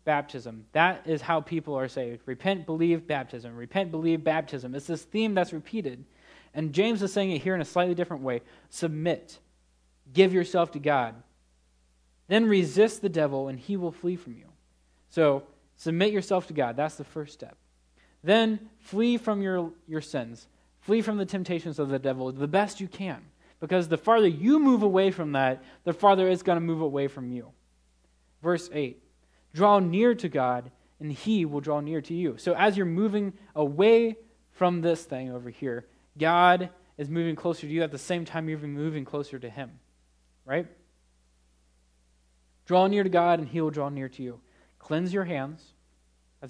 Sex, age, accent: male, 20-39, American